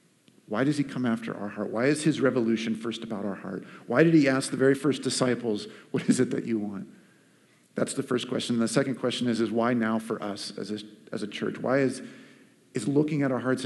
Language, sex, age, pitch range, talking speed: English, male, 50-69, 115-145 Hz, 235 wpm